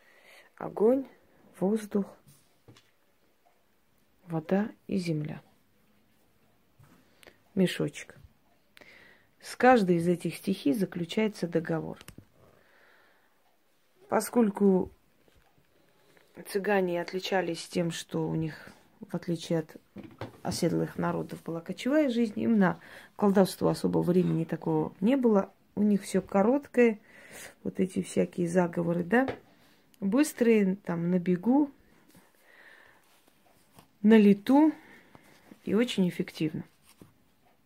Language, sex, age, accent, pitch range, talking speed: Russian, female, 30-49, native, 175-225 Hz, 85 wpm